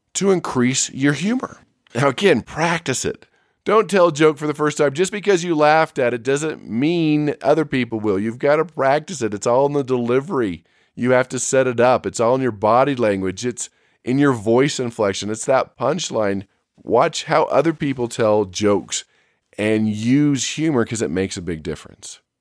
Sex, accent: male, American